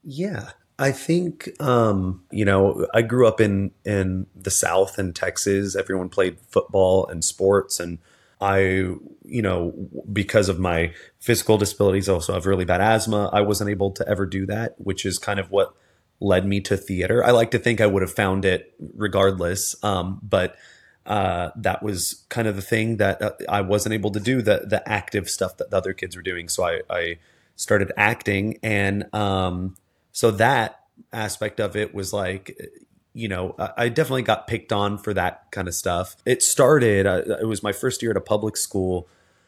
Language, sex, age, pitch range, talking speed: English, male, 30-49, 95-110 Hz, 190 wpm